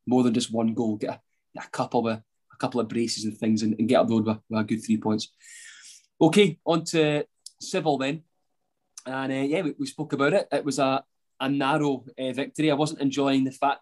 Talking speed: 225 wpm